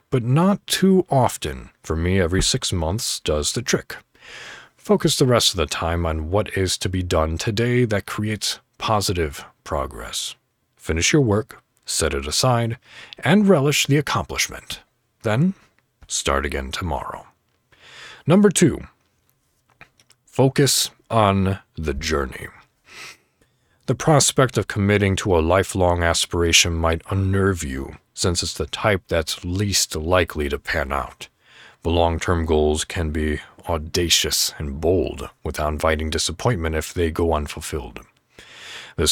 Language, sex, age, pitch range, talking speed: English, male, 40-59, 80-115 Hz, 130 wpm